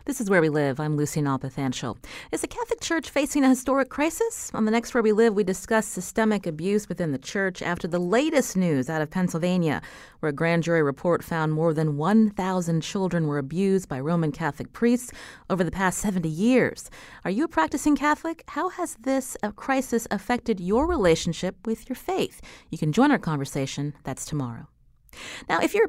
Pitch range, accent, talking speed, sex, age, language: 170-255 Hz, American, 190 wpm, female, 30-49, English